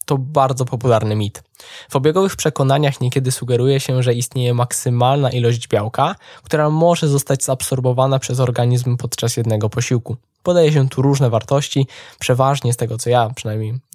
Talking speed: 150 wpm